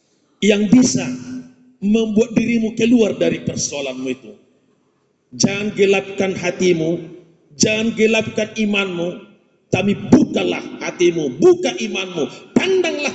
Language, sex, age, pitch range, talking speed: Indonesian, male, 50-69, 190-250 Hz, 90 wpm